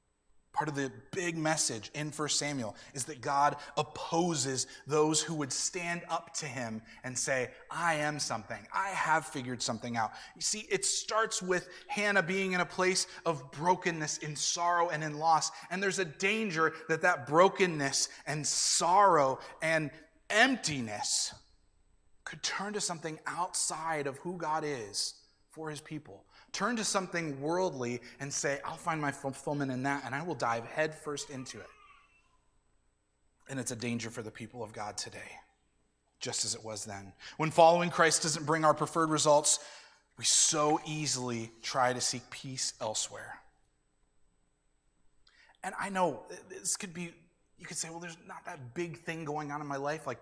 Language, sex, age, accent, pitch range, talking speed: English, male, 20-39, American, 130-180 Hz, 165 wpm